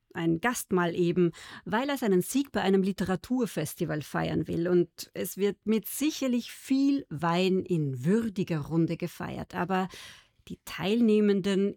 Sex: female